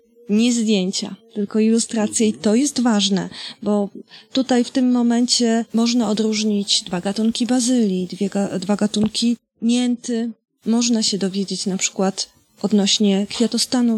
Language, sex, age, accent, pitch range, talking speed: Polish, female, 20-39, native, 200-235 Hz, 120 wpm